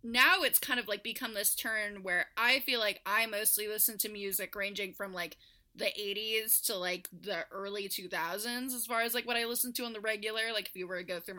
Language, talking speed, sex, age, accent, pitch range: English, 235 wpm, female, 20-39, American, 190-235 Hz